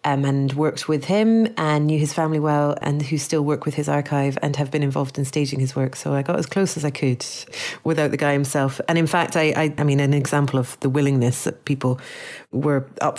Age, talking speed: 30-49, 240 wpm